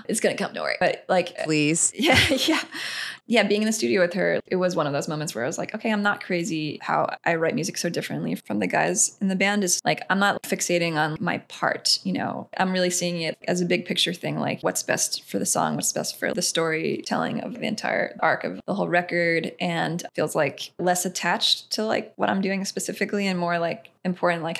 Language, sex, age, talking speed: English, female, 10-29, 240 wpm